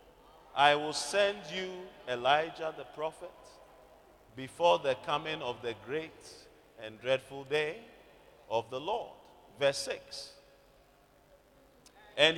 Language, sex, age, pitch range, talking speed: English, male, 40-59, 125-160 Hz, 105 wpm